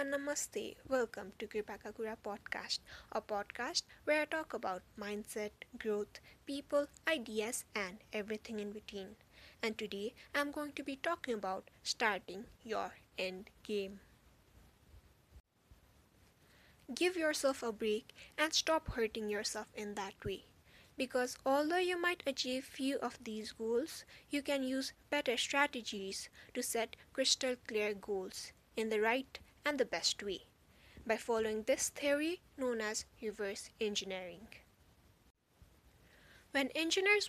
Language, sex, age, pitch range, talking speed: English, female, 20-39, 215-285 Hz, 125 wpm